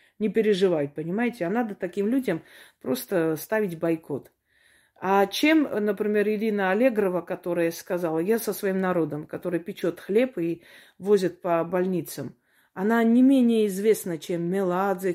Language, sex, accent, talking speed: Russian, female, native, 135 wpm